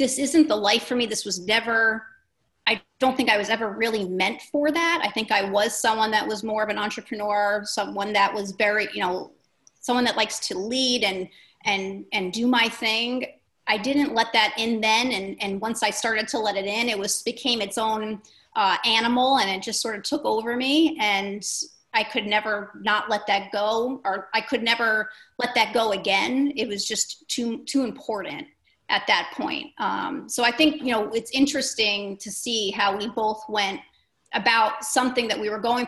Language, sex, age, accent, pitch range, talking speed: English, female, 30-49, American, 200-240 Hz, 205 wpm